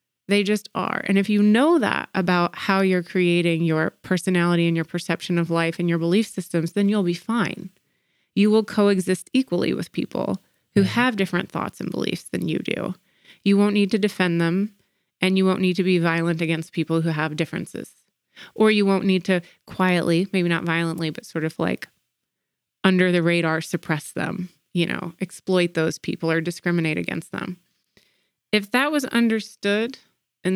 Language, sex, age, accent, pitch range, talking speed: English, female, 30-49, American, 175-210 Hz, 180 wpm